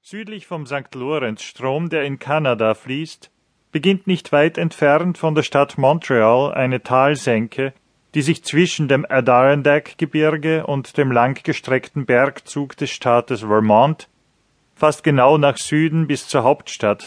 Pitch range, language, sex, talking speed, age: 125-155 Hz, German, male, 135 wpm, 40-59